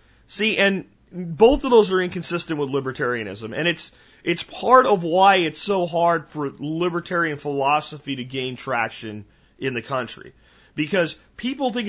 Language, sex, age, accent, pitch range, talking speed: English, male, 30-49, American, 135-180 Hz, 150 wpm